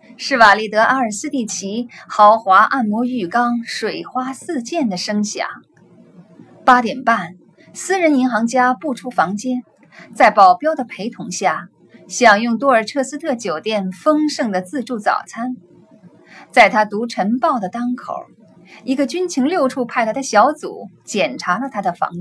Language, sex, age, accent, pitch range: Chinese, female, 20-39, native, 205-275 Hz